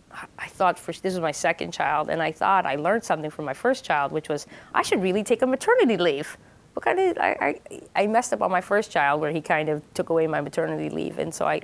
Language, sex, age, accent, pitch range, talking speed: English, female, 30-49, American, 165-210 Hz, 265 wpm